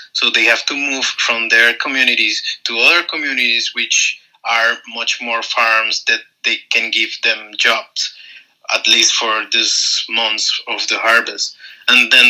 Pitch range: 110-120 Hz